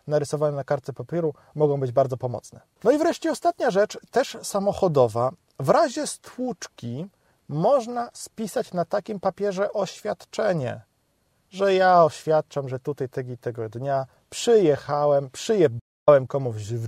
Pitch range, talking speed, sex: 135-180 Hz, 125 wpm, male